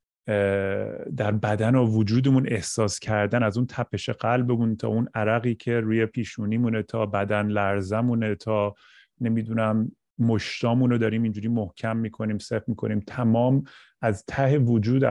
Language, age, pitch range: Persian, 30-49, 100-115 Hz